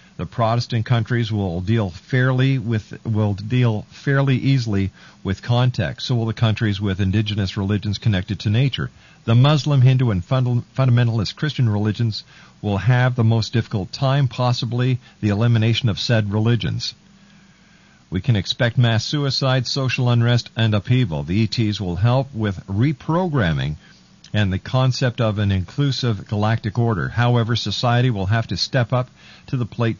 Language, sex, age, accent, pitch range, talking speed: English, male, 50-69, American, 105-130 Hz, 150 wpm